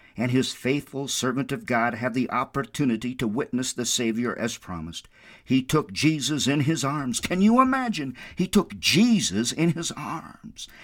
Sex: male